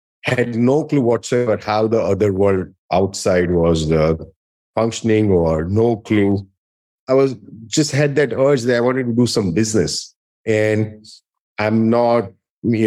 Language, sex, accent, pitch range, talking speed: English, male, Indian, 100-125 Hz, 150 wpm